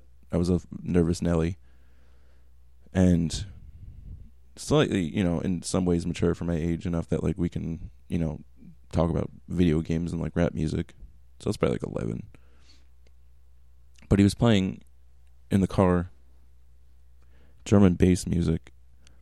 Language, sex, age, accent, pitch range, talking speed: English, male, 20-39, American, 65-90 Hz, 145 wpm